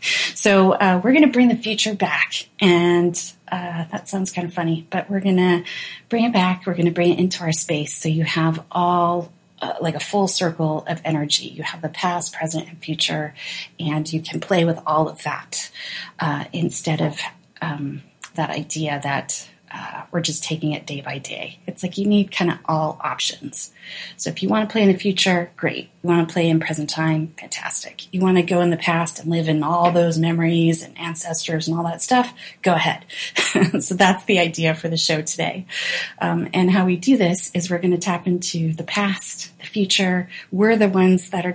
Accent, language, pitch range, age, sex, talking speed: American, English, 160-185 Hz, 30-49, female, 215 wpm